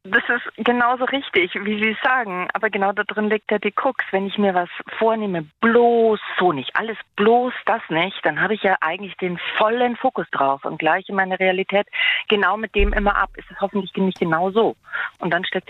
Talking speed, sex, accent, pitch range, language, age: 210 wpm, female, German, 180-215 Hz, German, 40-59